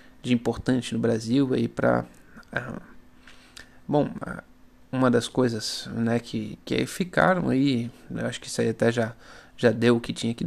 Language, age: Portuguese, 20-39